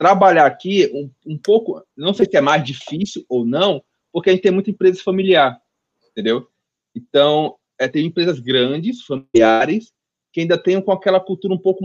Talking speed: 175 wpm